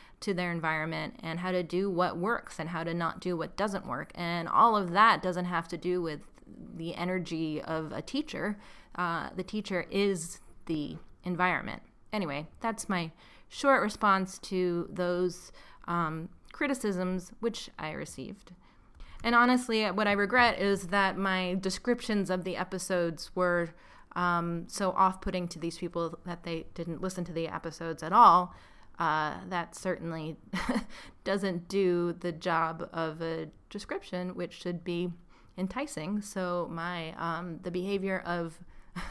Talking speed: 150 wpm